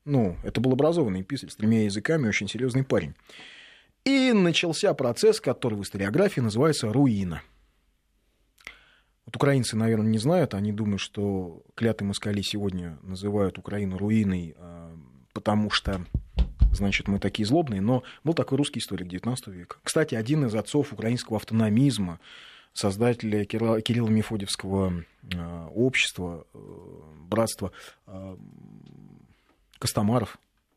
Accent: native